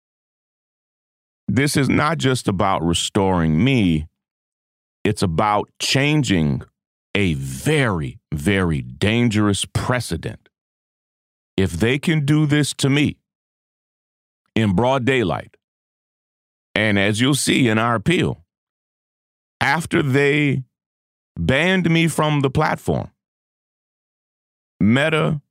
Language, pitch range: English, 80-125 Hz